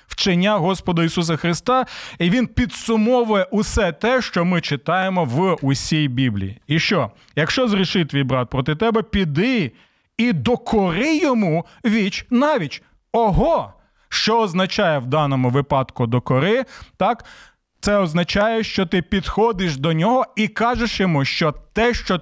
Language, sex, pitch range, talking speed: Ukrainian, male, 160-225 Hz, 135 wpm